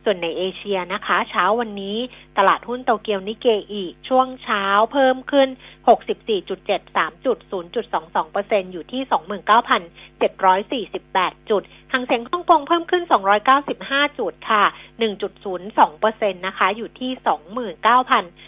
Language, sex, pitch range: Thai, female, 190-250 Hz